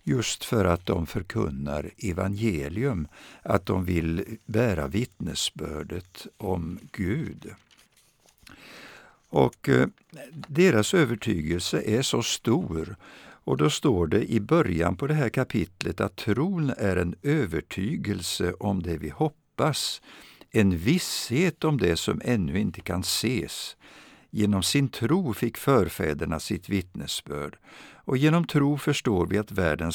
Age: 60-79